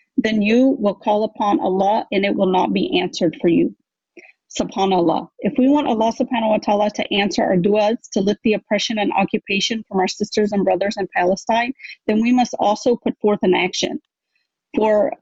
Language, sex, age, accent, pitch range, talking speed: English, female, 40-59, American, 195-235 Hz, 190 wpm